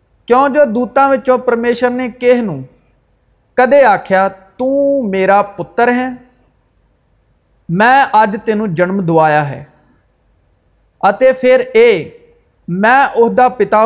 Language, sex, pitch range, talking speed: Urdu, male, 165-245 Hz, 80 wpm